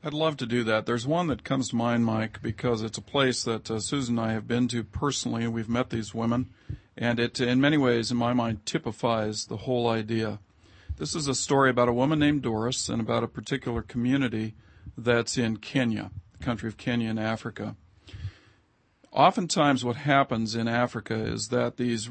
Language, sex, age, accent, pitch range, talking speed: English, male, 50-69, American, 115-130 Hz, 200 wpm